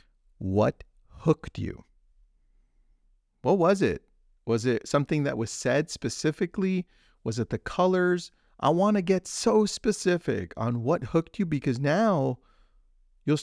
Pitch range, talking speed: 105-145 Hz, 135 wpm